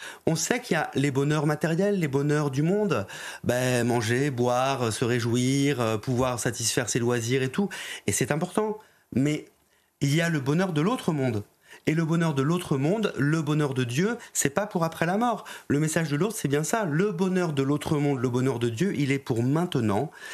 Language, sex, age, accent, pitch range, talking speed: French, male, 30-49, French, 130-165 Hz, 210 wpm